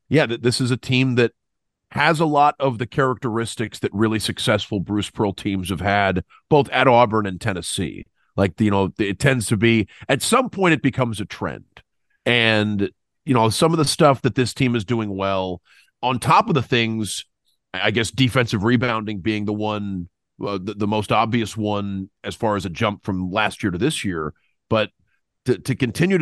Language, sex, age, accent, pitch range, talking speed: English, male, 40-59, American, 105-130 Hz, 195 wpm